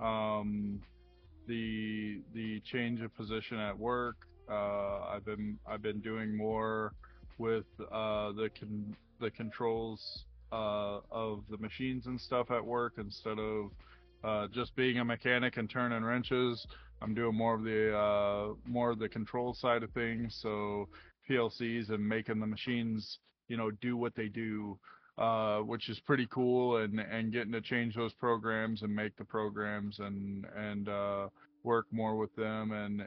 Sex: male